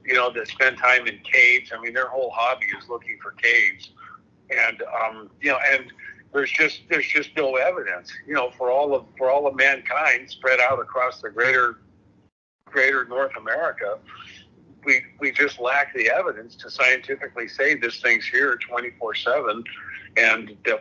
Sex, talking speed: male, 175 wpm